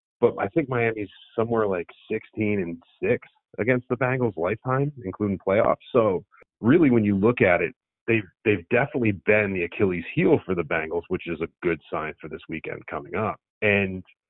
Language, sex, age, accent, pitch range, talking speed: English, male, 40-59, American, 95-115 Hz, 180 wpm